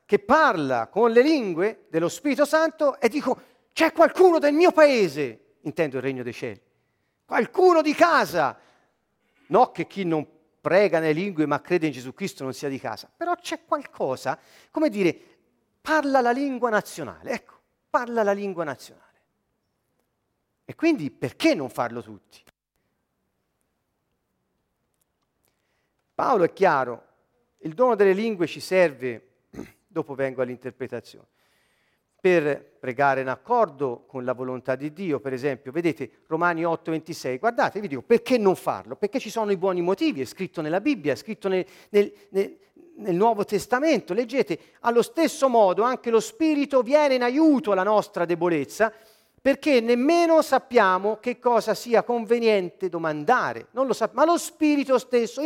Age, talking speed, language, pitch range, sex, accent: 40-59, 145 wpm, Italian, 160-265 Hz, male, native